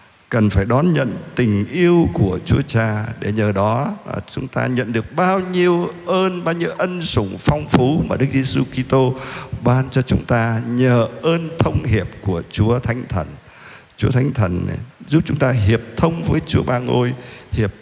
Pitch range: 110-145 Hz